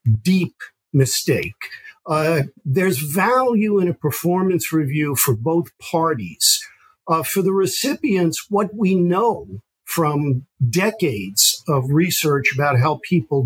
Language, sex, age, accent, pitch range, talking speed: English, male, 50-69, American, 140-185 Hz, 115 wpm